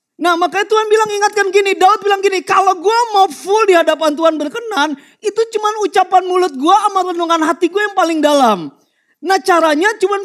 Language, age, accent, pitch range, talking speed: Indonesian, 30-49, native, 325-405 Hz, 185 wpm